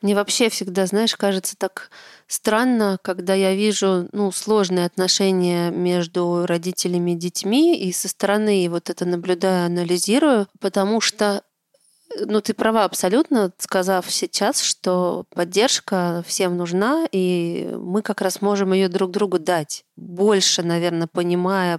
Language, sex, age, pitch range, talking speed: Russian, female, 30-49, 175-200 Hz, 130 wpm